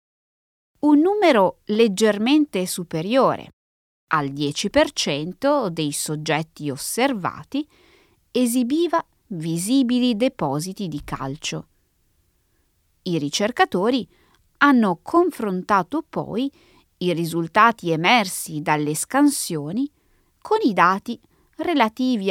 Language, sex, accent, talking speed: Italian, female, native, 75 wpm